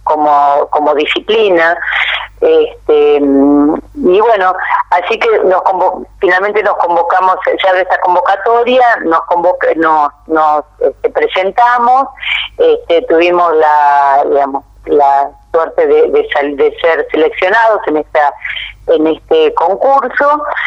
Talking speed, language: 115 wpm, Spanish